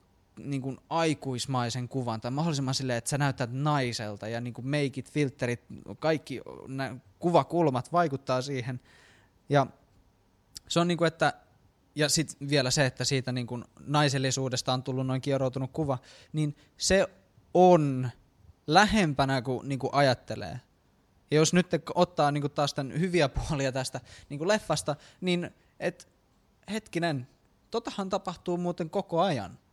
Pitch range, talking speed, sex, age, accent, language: 125-160 Hz, 140 wpm, male, 20-39, native, Finnish